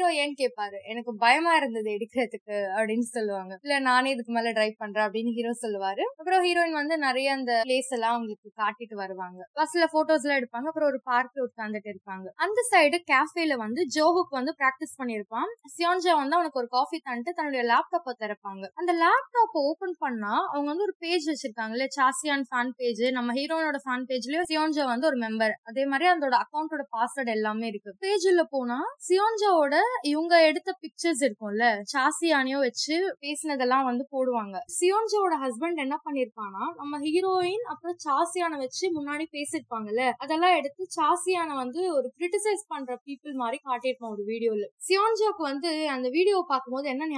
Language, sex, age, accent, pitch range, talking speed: Tamil, female, 20-39, native, 240-320 Hz, 70 wpm